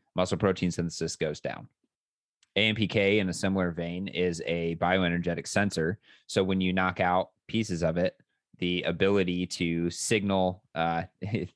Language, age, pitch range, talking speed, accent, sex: English, 20-39, 85-100 Hz, 140 wpm, American, male